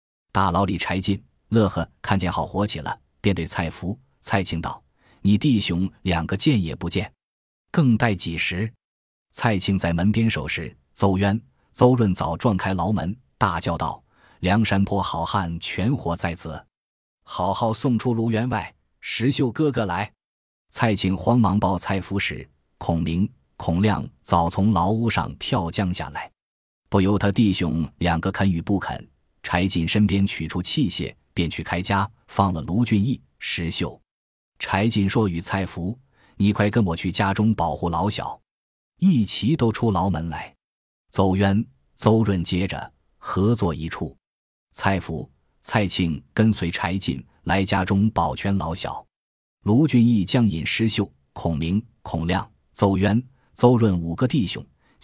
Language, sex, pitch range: Chinese, male, 85-110 Hz